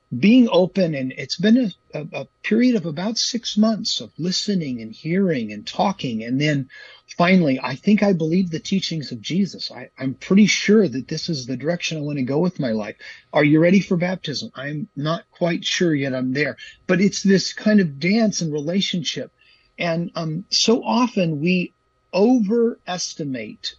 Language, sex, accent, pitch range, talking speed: English, male, American, 140-190 Hz, 180 wpm